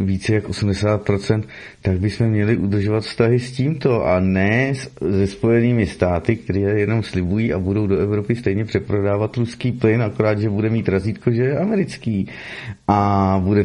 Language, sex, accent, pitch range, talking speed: Czech, male, native, 95-120 Hz, 160 wpm